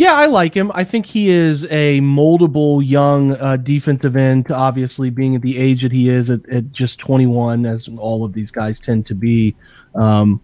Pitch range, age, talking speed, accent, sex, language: 125-150 Hz, 30-49, 200 wpm, American, male, English